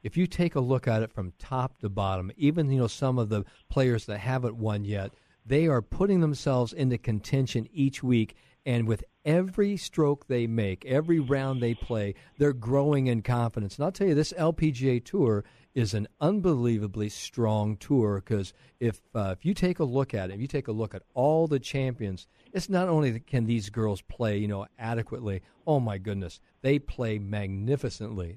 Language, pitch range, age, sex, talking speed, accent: English, 105-140 Hz, 50-69, male, 190 wpm, American